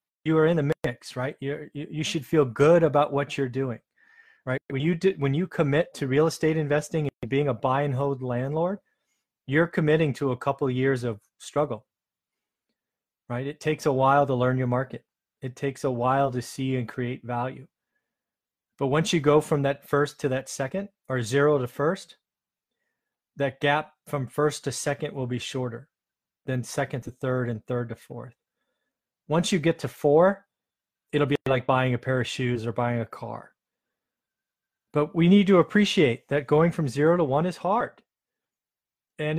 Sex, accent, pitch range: male, American, 125-155 Hz